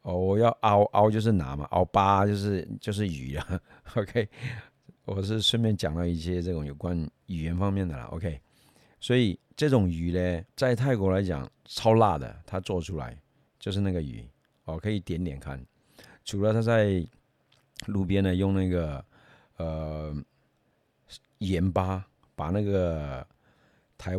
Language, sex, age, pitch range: Chinese, male, 50-69, 85-105 Hz